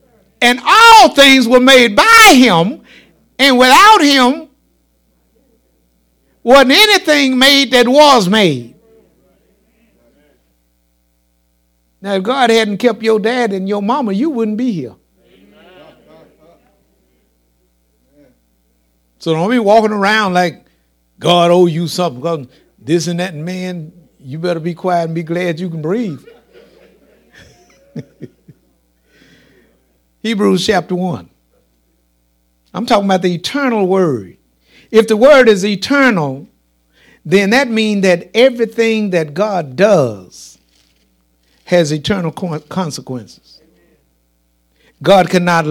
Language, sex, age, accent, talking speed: English, male, 60-79, American, 105 wpm